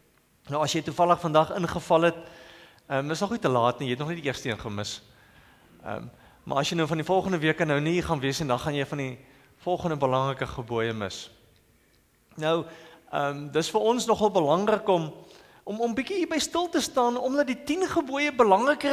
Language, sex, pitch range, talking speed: English, male, 160-225 Hz, 200 wpm